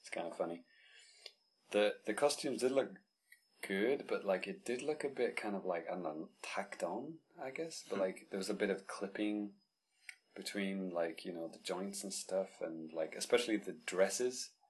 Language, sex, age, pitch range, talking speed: English, male, 30-49, 85-125 Hz, 195 wpm